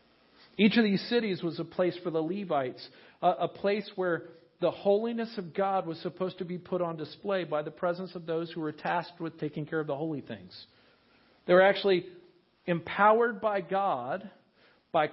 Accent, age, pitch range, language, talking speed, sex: American, 50-69, 165-210 Hz, English, 185 wpm, male